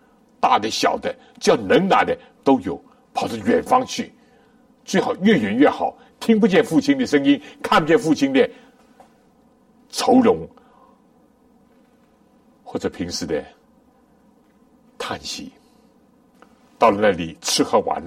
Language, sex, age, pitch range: Chinese, male, 60-79, 245-250 Hz